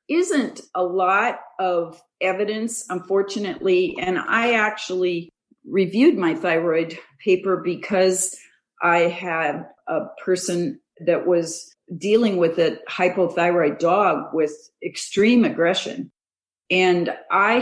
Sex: female